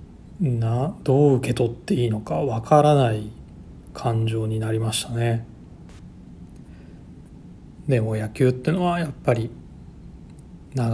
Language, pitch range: Japanese, 110-130 Hz